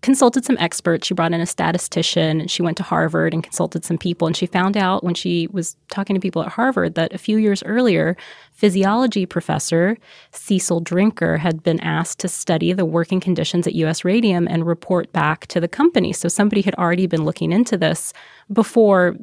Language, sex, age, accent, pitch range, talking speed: English, female, 20-39, American, 165-200 Hz, 200 wpm